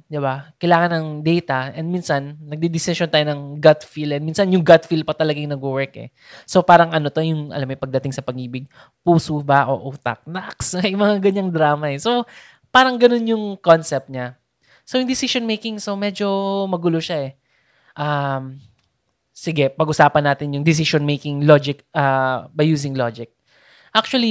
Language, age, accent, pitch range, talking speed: Filipino, 20-39, native, 140-185 Hz, 170 wpm